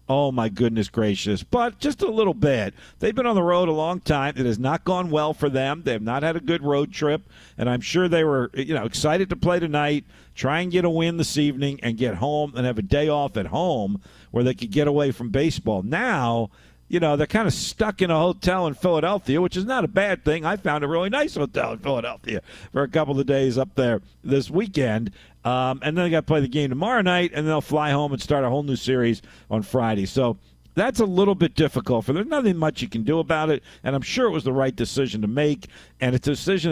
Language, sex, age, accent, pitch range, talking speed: English, male, 50-69, American, 115-160 Hz, 255 wpm